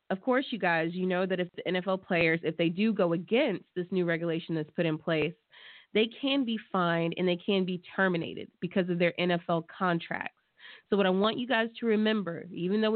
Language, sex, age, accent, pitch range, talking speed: English, female, 20-39, American, 170-215 Hz, 220 wpm